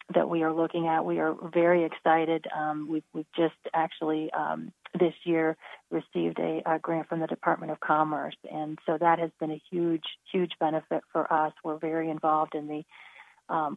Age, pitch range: 40-59, 155-170 Hz